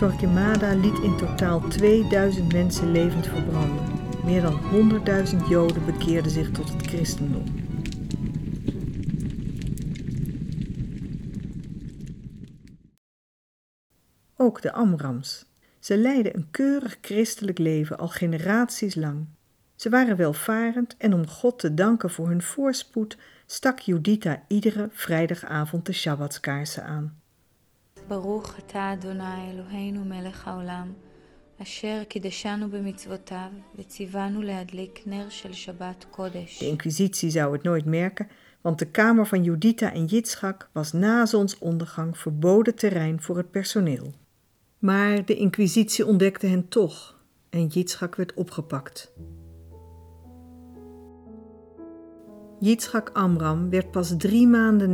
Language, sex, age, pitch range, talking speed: Dutch, female, 50-69, 160-205 Hz, 90 wpm